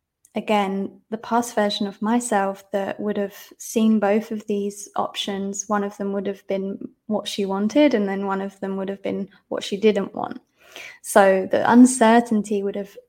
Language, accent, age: English, British, 20-39